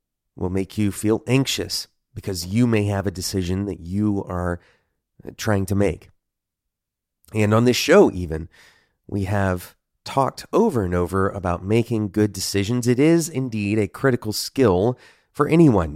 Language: English